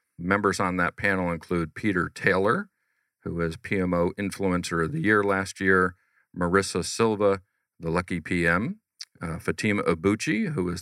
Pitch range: 85-95 Hz